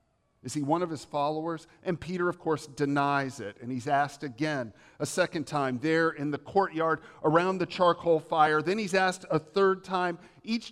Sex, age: male, 50-69